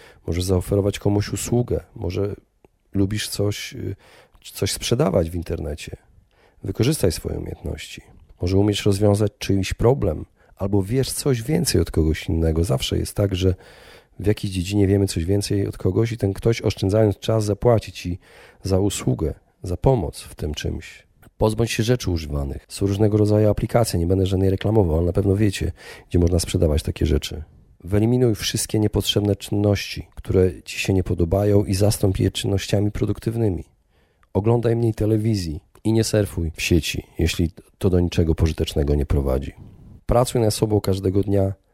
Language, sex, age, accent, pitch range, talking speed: Polish, male, 40-59, native, 85-110 Hz, 155 wpm